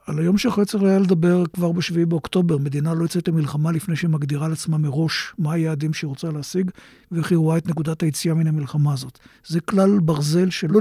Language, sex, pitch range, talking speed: Hebrew, male, 160-190 Hz, 200 wpm